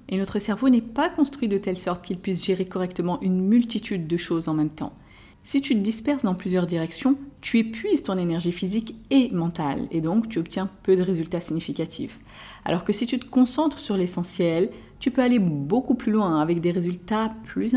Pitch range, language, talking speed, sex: 175-225 Hz, French, 205 wpm, female